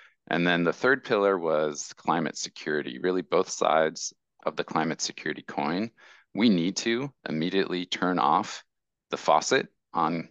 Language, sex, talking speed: English, male, 145 wpm